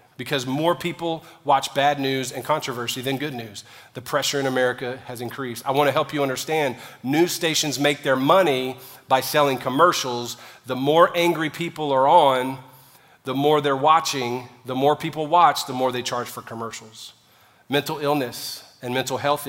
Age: 40-59